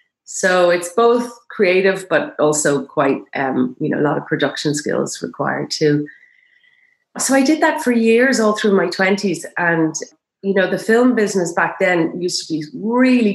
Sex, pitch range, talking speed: female, 145-190 Hz, 175 wpm